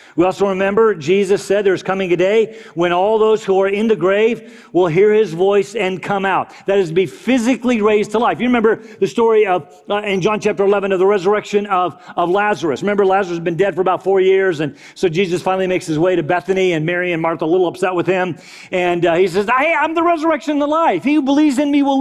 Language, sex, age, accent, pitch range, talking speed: English, male, 40-59, American, 185-255 Hz, 250 wpm